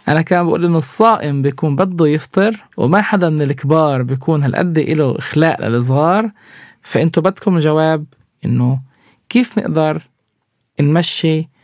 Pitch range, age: 135-180 Hz, 20-39